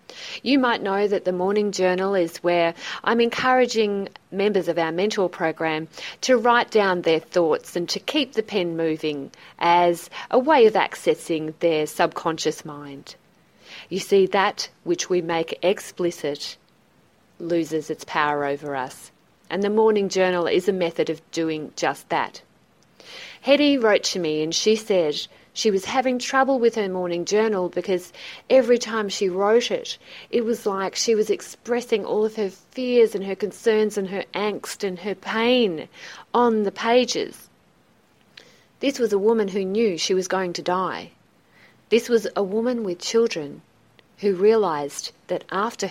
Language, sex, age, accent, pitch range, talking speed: English, female, 40-59, Australian, 165-220 Hz, 160 wpm